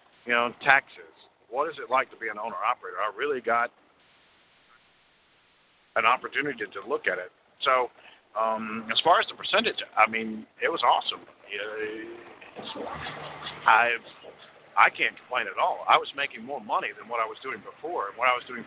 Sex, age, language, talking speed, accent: male, 50-69, English, 175 wpm, American